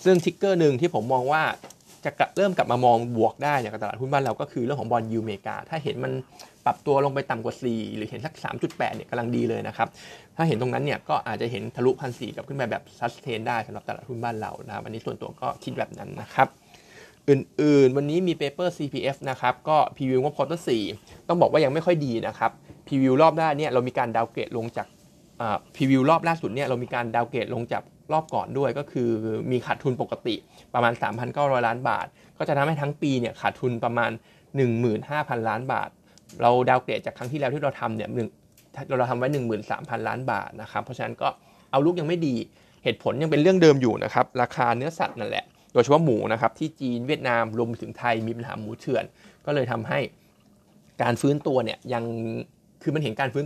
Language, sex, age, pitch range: Thai, male, 20-39, 120-150 Hz